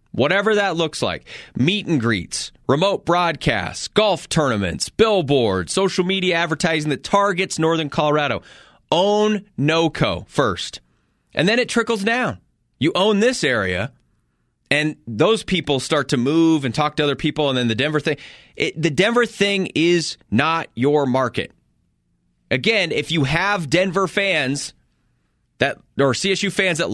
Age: 30-49